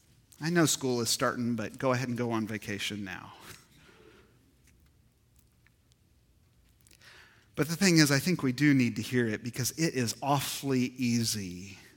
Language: English